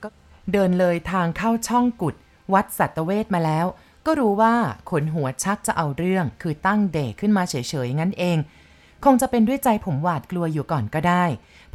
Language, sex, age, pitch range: Thai, female, 20-39, 160-210 Hz